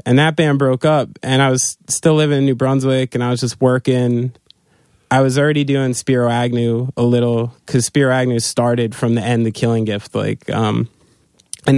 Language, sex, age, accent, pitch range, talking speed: English, male, 30-49, American, 115-130 Hz, 200 wpm